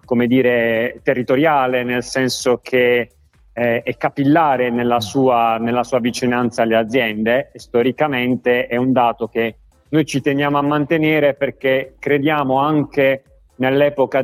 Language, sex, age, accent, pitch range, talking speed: Italian, male, 40-59, native, 120-135 Hz, 130 wpm